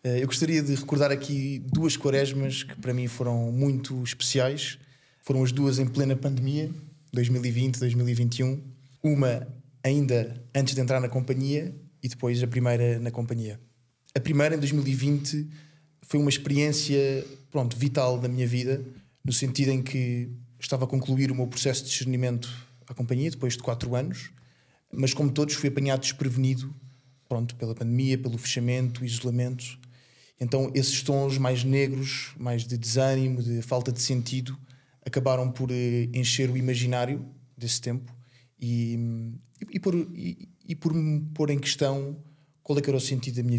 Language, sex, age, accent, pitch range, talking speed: Portuguese, male, 20-39, Portuguese, 125-140 Hz, 155 wpm